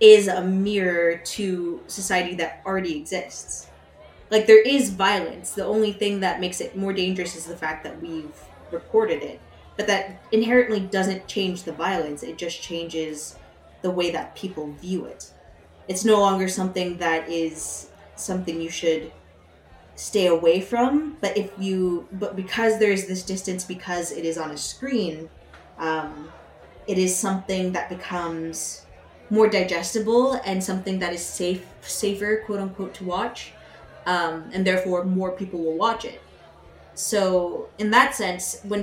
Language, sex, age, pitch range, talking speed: English, female, 20-39, 165-200 Hz, 155 wpm